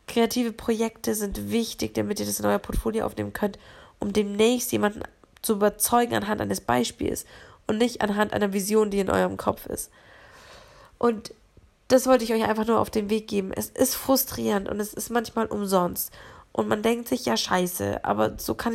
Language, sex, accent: German, female, German